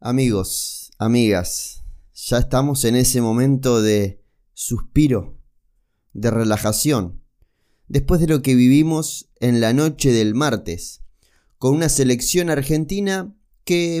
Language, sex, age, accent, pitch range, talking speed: Spanish, male, 30-49, Argentinian, 125-175 Hz, 110 wpm